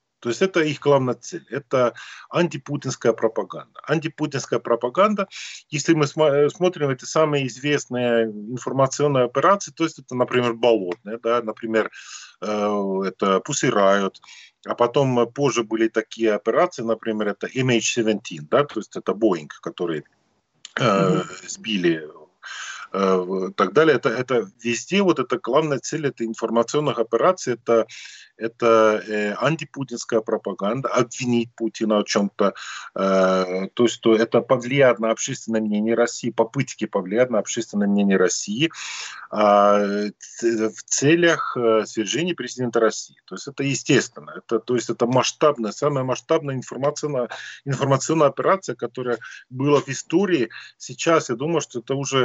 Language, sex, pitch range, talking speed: Russian, male, 110-140 Hz, 130 wpm